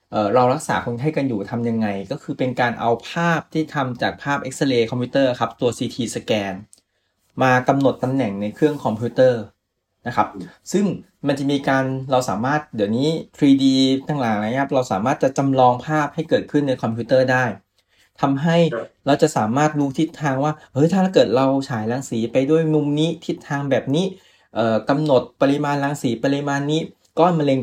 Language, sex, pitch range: Thai, male, 115-150 Hz